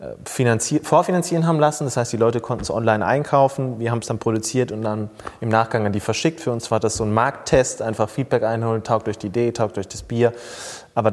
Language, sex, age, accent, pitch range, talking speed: German, male, 20-39, German, 110-130 Hz, 230 wpm